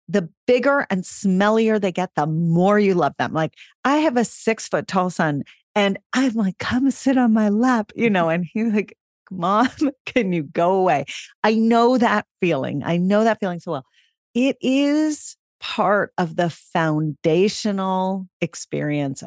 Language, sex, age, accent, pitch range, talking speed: English, female, 40-59, American, 155-215 Hz, 170 wpm